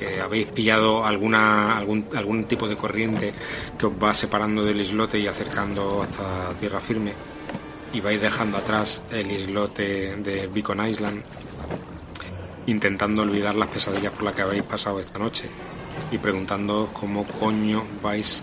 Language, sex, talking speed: Spanish, male, 145 wpm